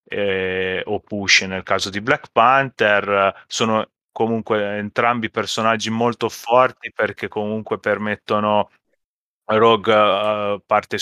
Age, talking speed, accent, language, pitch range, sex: 30-49, 100 wpm, native, Italian, 100-115 Hz, male